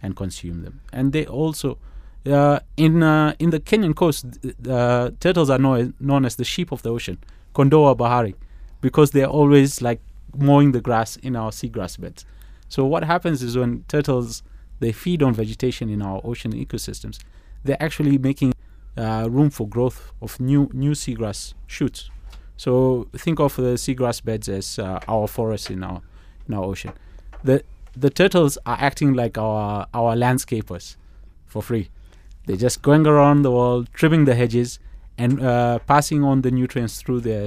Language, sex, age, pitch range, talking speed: English, male, 30-49, 100-135 Hz, 180 wpm